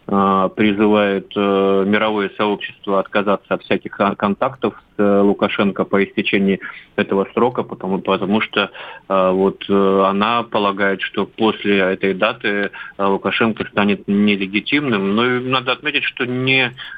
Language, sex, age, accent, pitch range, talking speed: Russian, male, 20-39, native, 100-115 Hz, 110 wpm